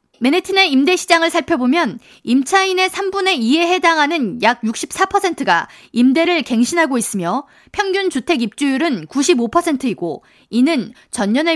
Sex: female